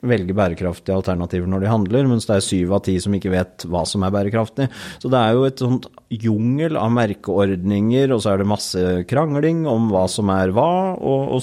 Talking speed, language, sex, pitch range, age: 235 wpm, English, male, 100-125 Hz, 30-49